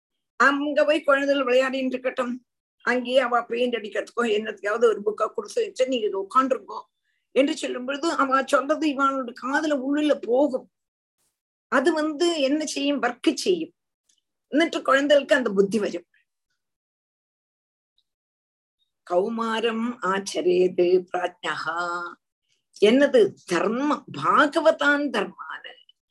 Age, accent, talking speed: 50-69, native, 95 wpm